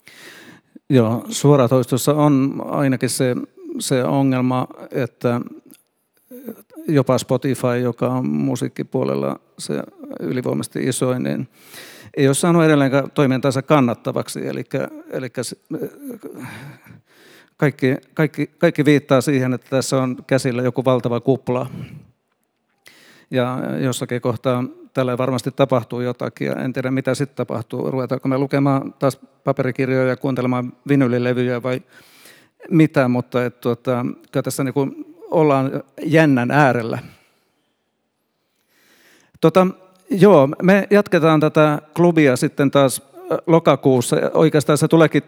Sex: male